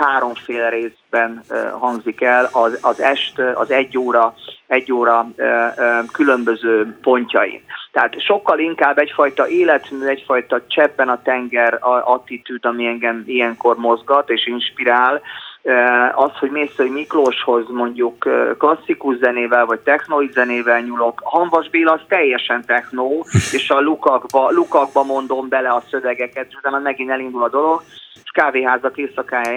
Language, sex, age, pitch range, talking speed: Hungarian, male, 30-49, 125-155 Hz, 125 wpm